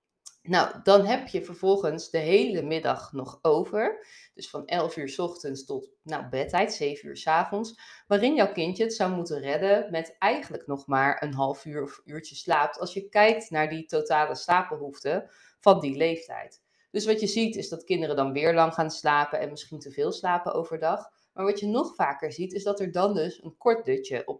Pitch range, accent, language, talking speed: 155-210 Hz, Dutch, Dutch, 205 wpm